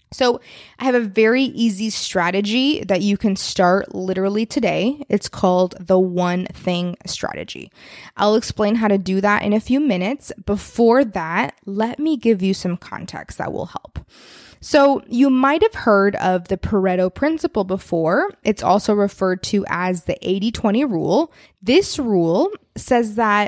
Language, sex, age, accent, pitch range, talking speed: English, female, 20-39, American, 190-265 Hz, 160 wpm